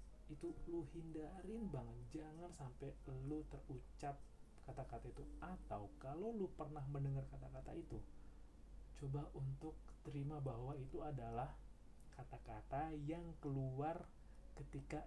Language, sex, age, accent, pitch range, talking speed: Indonesian, male, 30-49, native, 115-145 Hz, 110 wpm